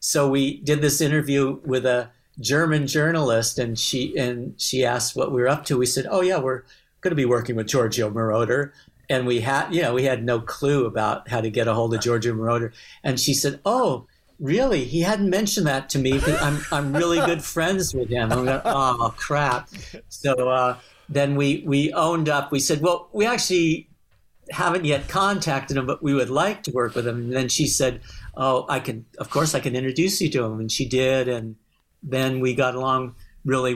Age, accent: 60-79, American